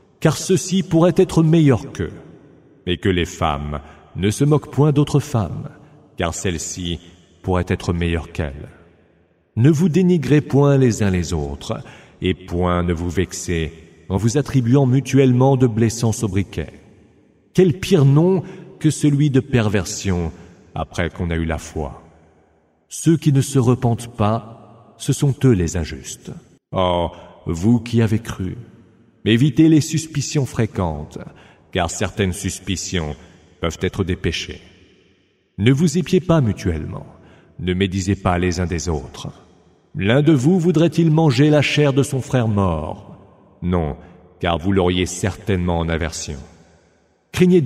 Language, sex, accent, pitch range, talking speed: English, male, French, 90-135 Hz, 140 wpm